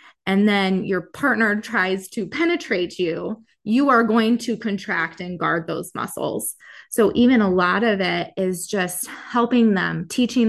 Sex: female